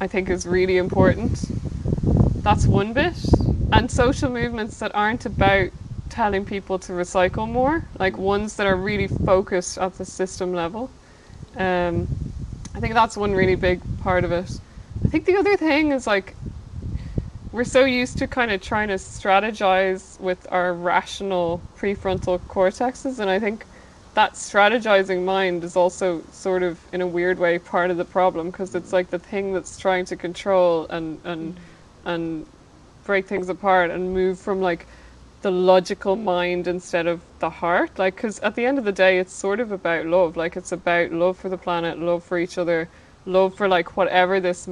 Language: English